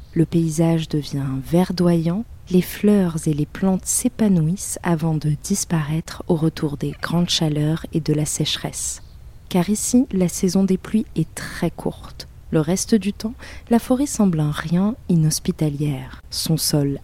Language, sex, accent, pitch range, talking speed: French, female, French, 155-205 Hz, 150 wpm